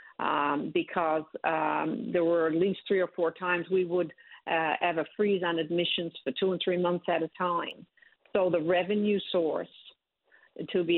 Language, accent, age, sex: English, American, 60-79, female